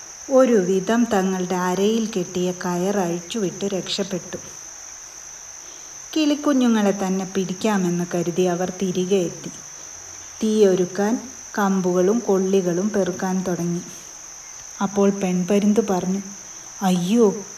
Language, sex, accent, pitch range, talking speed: Malayalam, female, native, 185-210 Hz, 85 wpm